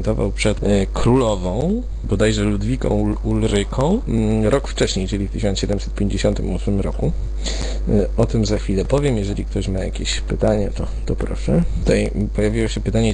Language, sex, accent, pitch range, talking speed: Polish, male, native, 95-110 Hz, 130 wpm